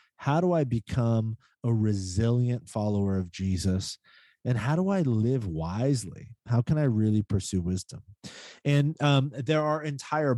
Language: English